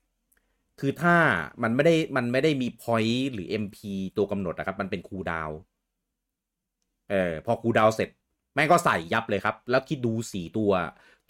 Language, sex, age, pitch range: Thai, male, 30-49, 100-140 Hz